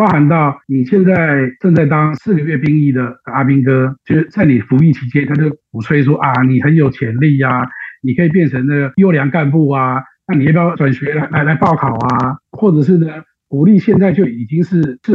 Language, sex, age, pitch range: Chinese, male, 50-69, 130-175 Hz